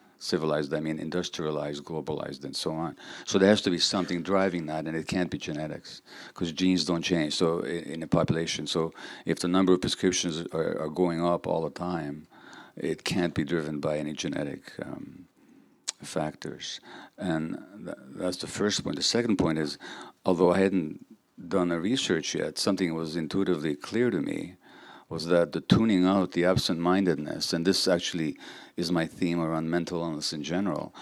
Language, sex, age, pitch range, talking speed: English, male, 50-69, 80-95 Hz, 175 wpm